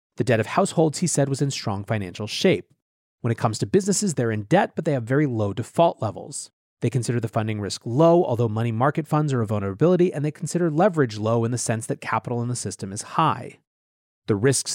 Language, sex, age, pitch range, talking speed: English, male, 30-49, 110-150 Hz, 230 wpm